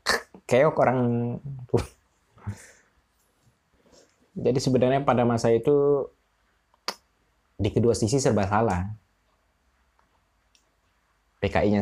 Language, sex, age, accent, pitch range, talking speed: Indonesian, male, 20-39, native, 95-125 Hz, 65 wpm